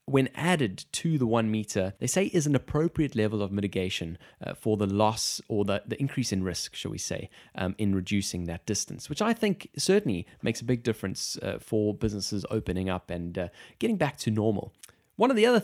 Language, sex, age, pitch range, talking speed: English, male, 20-39, 110-155 Hz, 210 wpm